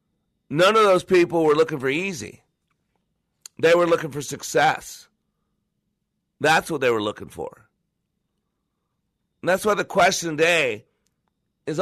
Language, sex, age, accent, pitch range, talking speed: English, male, 40-59, American, 155-185 Hz, 130 wpm